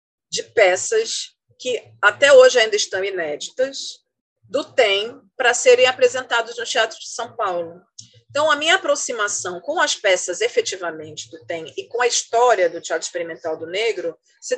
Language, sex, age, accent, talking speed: Portuguese, female, 40-59, Brazilian, 155 wpm